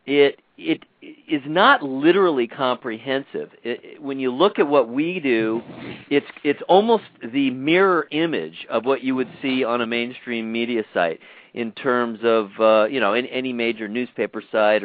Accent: American